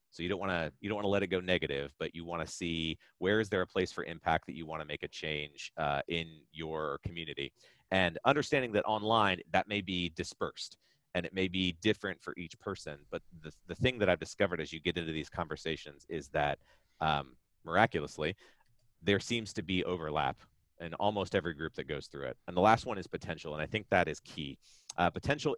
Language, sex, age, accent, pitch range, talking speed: English, male, 30-49, American, 80-95 Hz, 215 wpm